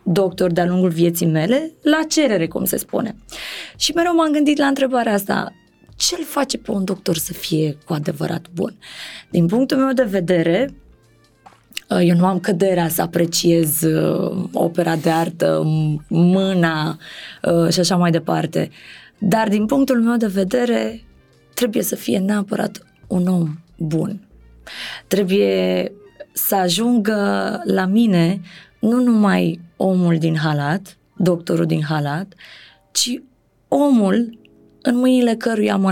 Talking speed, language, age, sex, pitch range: 130 wpm, Romanian, 20-39, female, 170-215 Hz